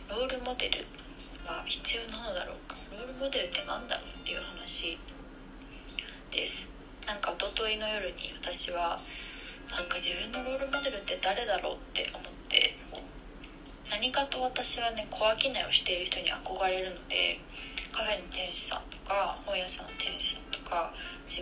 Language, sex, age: Japanese, female, 20-39